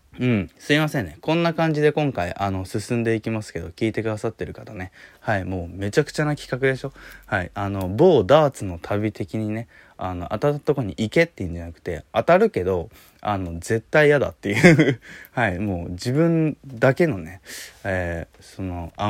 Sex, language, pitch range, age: male, Japanese, 90-135 Hz, 20-39